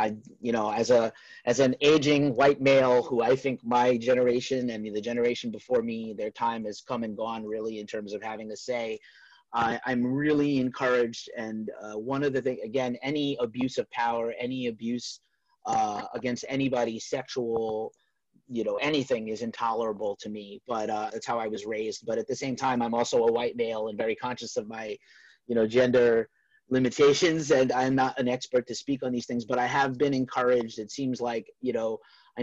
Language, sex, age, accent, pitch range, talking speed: English, male, 30-49, American, 115-135 Hz, 200 wpm